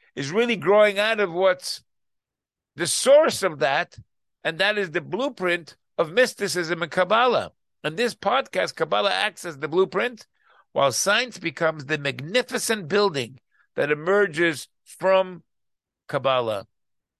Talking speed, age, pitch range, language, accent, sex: 130 wpm, 50-69, 160-210 Hz, English, American, male